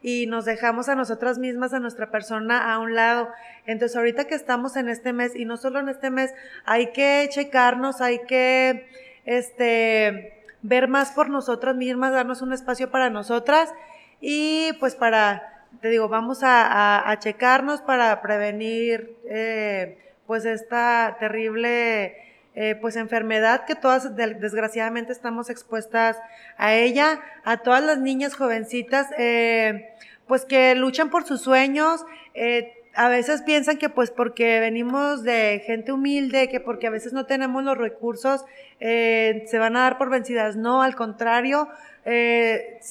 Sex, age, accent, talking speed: female, 20-39, Mexican, 150 wpm